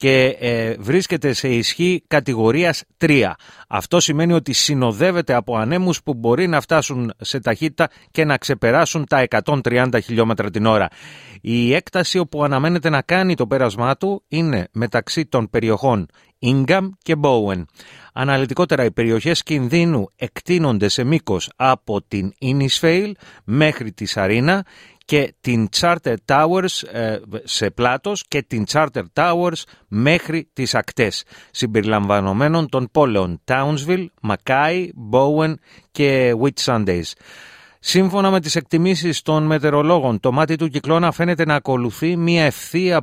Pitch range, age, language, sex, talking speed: 120-165 Hz, 30-49, Greek, male, 130 wpm